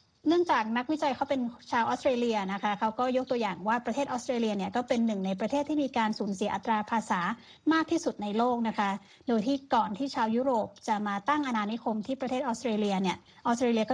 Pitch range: 215-265 Hz